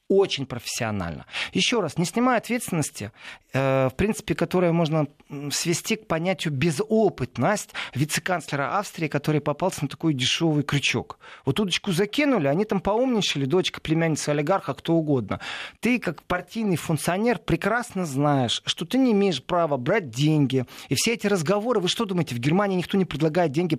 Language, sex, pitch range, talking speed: Russian, male, 140-195 Hz, 155 wpm